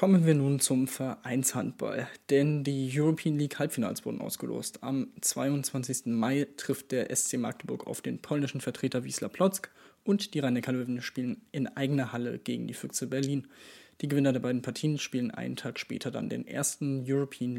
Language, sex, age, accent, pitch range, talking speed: German, male, 20-39, German, 130-150 Hz, 165 wpm